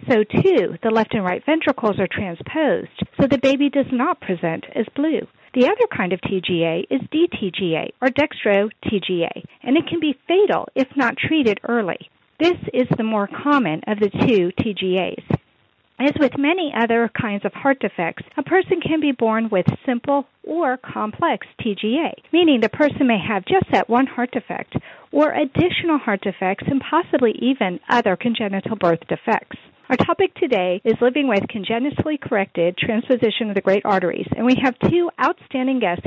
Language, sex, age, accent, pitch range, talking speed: English, female, 50-69, American, 200-285 Hz, 170 wpm